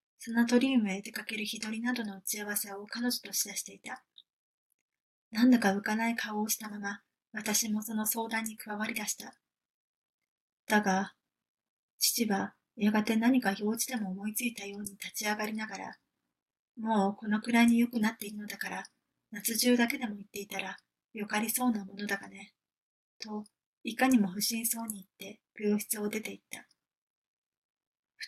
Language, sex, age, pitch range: Japanese, female, 20-39, 205-230 Hz